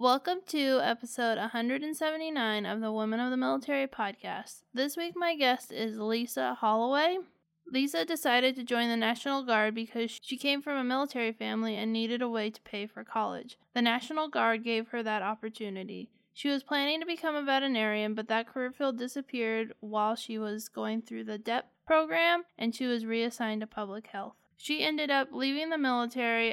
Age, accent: 20-39, American